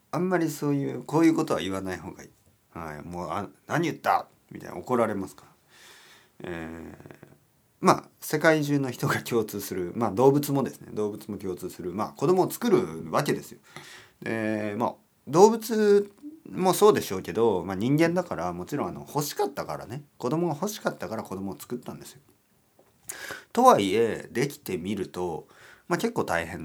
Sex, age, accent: male, 40-59, native